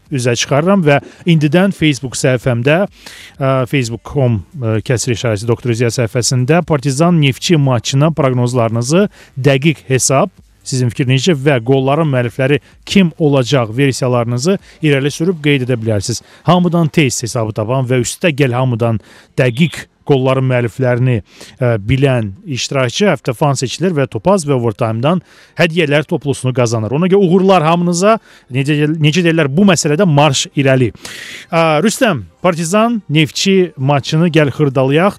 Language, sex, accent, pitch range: Russian, male, Turkish, 125-165 Hz